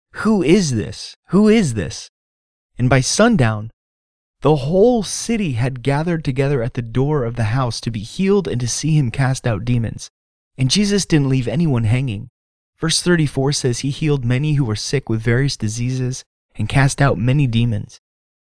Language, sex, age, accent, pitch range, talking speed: English, male, 30-49, American, 110-150 Hz, 175 wpm